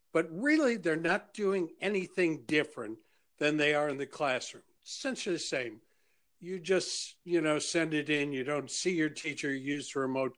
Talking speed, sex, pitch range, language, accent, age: 185 wpm, male, 140-185 Hz, English, American, 60-79